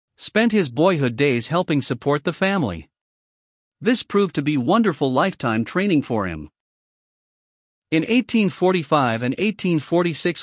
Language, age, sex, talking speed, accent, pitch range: English, 50-69, male, 120 wpm, American, 130-185 Hz